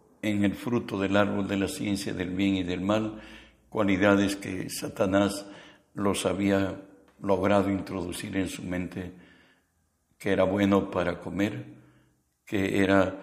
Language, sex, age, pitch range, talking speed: Spanish, male, 60-79, 95-110 Hz, 135 wpm